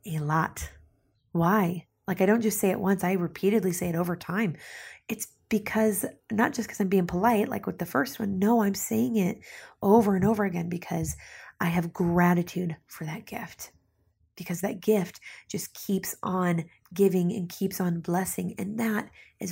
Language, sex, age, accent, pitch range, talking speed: English, female, 30-49, American, 170-200 Hz, 180 wpm